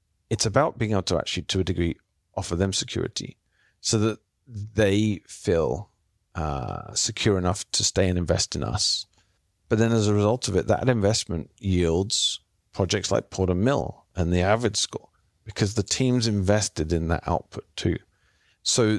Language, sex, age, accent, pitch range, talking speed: English, male, 40-59, British, 90-110 Hz, 165 wpm